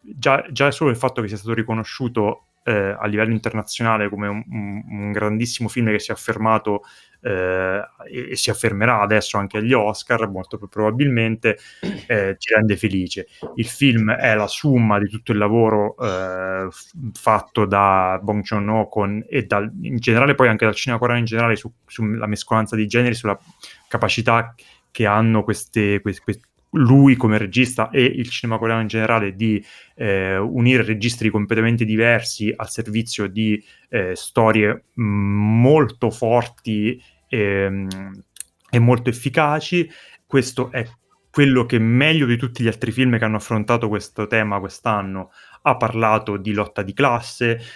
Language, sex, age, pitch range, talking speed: Italian, male, 20-39, 105-120 Hz, 155 wpm